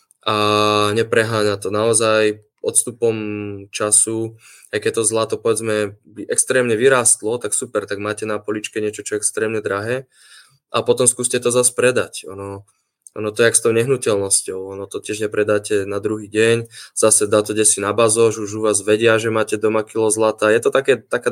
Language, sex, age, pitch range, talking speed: Slovak, male, 20-39, 105-120 Hz, 180 wpm